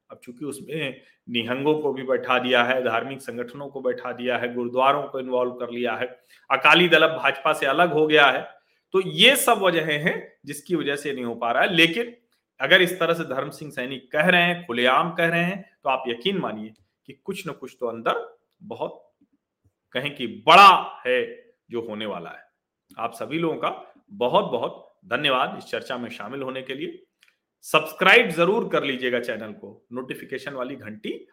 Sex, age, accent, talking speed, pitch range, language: male, 40-59, native, 190 wpm, 130-185 Hz, Hindi